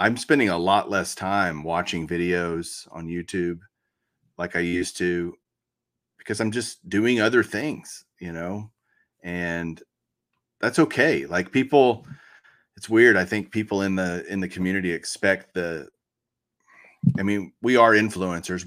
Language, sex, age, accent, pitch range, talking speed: English, male, 30-49, American, 90-115 Hz, 140 wpm